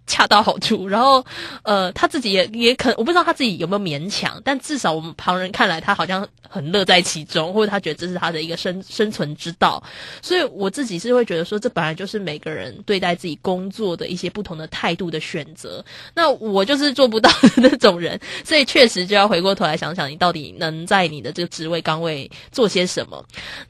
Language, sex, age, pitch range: Chinese, female, 10-29, 175-235 Hz